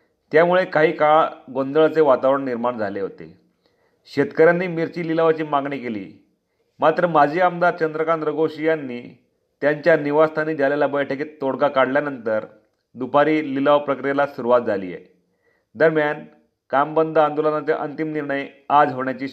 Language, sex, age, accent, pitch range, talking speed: Marathi, male, 40-59, native, 145-165 Hz, 120 wpm